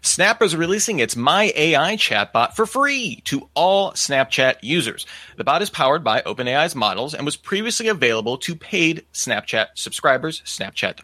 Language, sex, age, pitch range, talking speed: English, male, 30-49, 130-190 Hz, 165 wpm